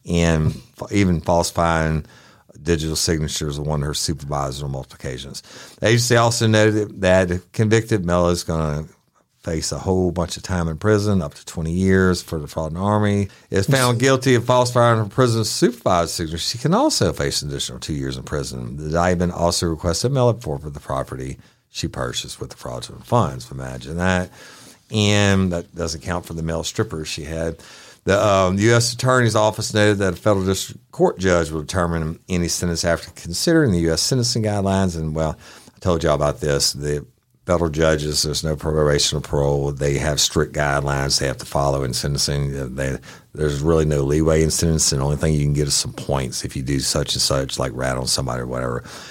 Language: English